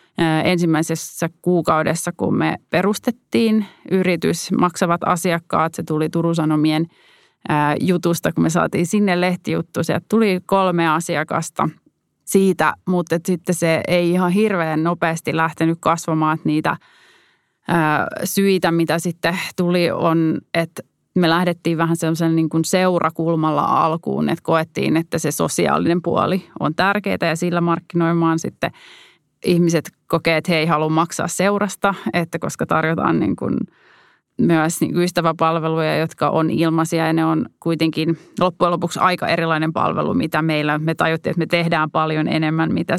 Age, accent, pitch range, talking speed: 30-49, native, 160-180 Hz, 135 wpm